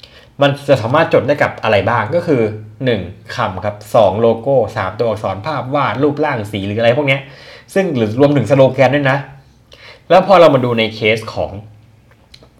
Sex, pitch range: male, 105-140 Hz